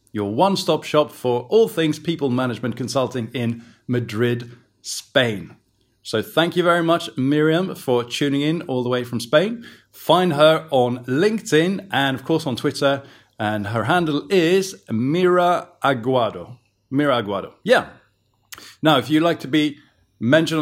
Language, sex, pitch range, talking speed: English, male, 120-160 Hz, 150 wpm